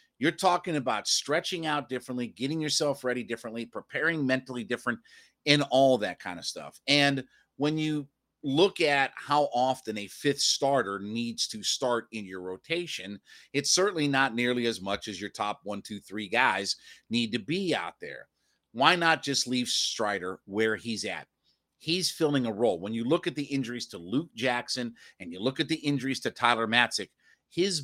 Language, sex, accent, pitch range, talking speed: English, male, American, 115-145 Hz, 180 wpm